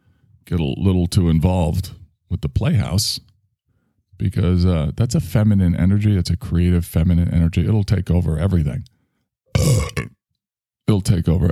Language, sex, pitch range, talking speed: English, male, 85-115 Hz, 135 wpm